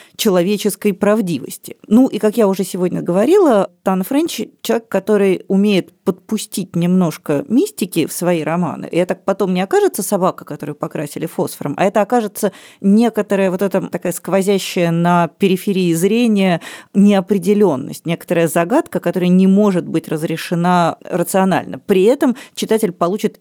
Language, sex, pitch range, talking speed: Russian, female, 170-220 Hz, 135 wpm